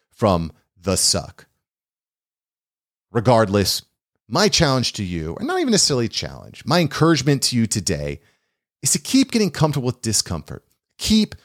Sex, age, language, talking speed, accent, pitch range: male, 40-59, English, 140 wpm, American, 100-135 Hz